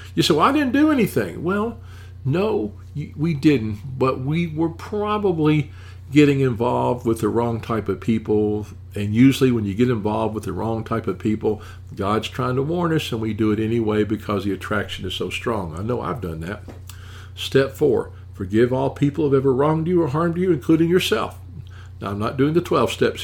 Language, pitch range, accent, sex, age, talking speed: English, 95-135 Hz, American, male, 50-69, 200 wpm